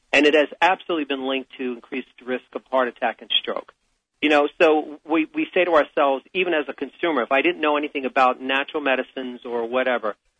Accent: American